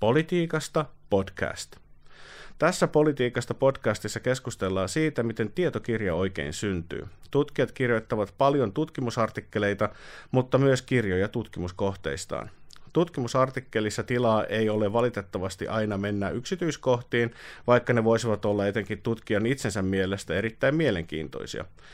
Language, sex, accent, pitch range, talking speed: Finnish, male, native, 100-130 Hz, 100 wpm